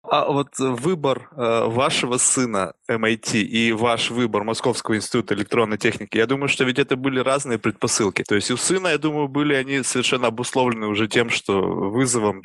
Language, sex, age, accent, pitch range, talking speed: Russian, male, 20-39, native, 115-135 Hz, 175 wpm